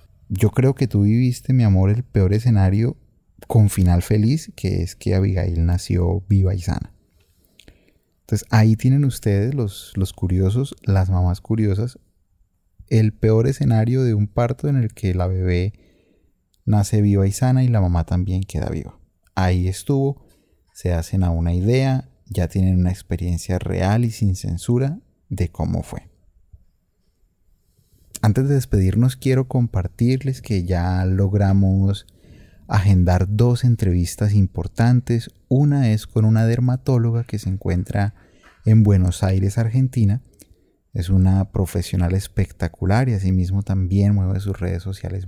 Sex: male